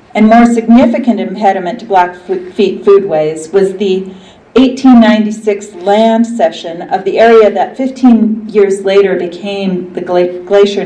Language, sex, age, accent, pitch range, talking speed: English, female, 40-59, American, 185-230 Hz, 120 wpm